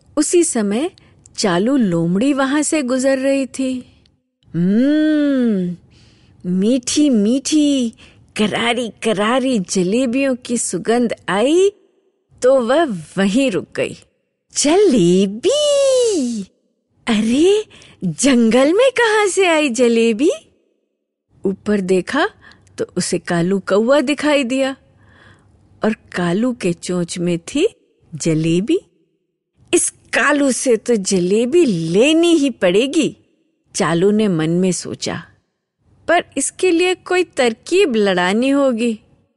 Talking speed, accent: 100 wpm, native